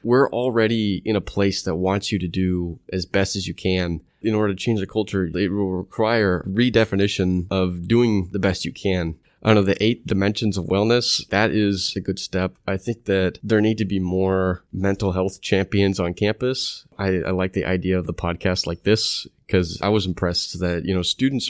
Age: 20-39